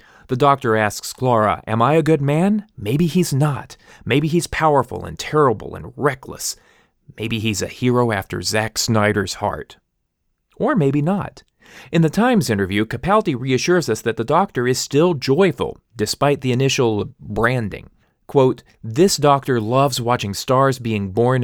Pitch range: 110-145 Hz